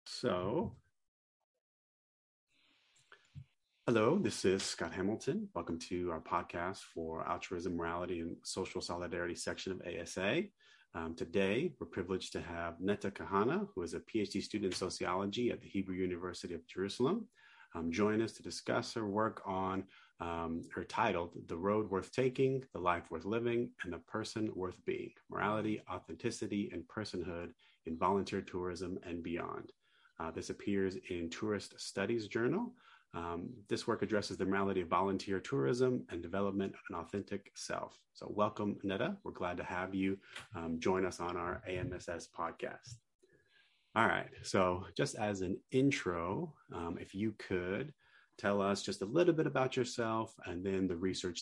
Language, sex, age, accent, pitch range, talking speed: English, male, 30-49, American, 85-105 Hz, 155 wpm